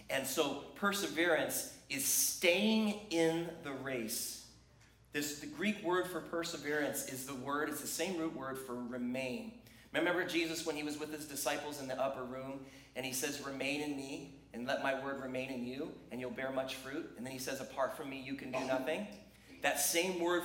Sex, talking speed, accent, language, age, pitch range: male, 200 wpm, American, English, 30-49, 120-155 Hz